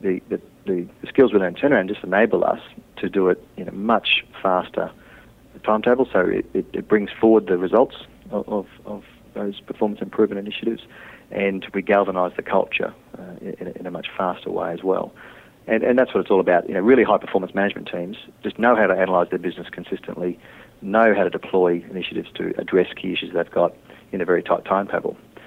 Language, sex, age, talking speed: English, male, 40-59, 205 wpm